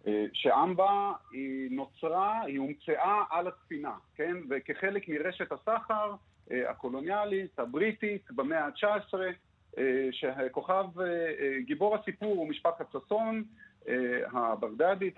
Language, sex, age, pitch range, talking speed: Hebrew, male, 40-59, 135-215 Hz, 85 wpm